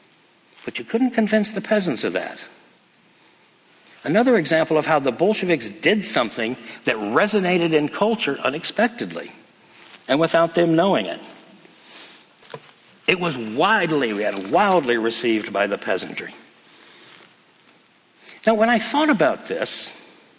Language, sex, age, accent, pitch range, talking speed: English, male, 60-79, American, 145-205 Hz, 125 wpm